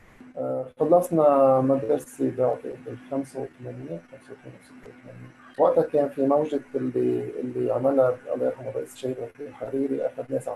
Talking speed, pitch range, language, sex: 125 wpm, 125-155 Hz, Arabic, male